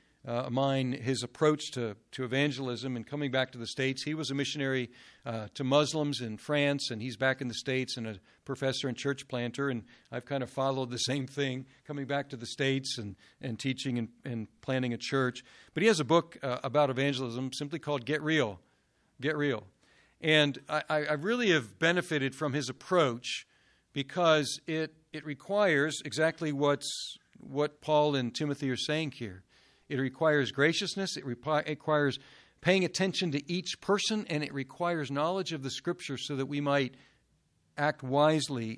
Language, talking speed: English, 175 wpm